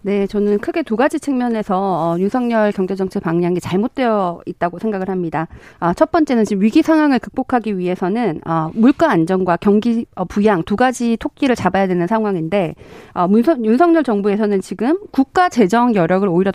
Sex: female